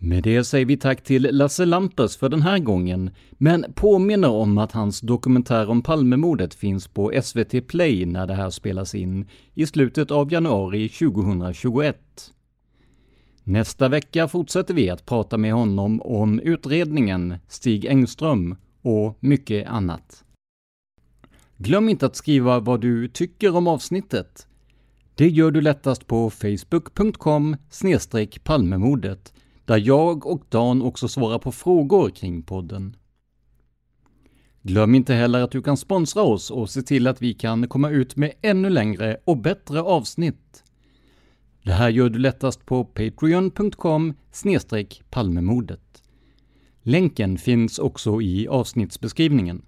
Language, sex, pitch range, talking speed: Swedish, male, 110-145 Hz, 130 wpm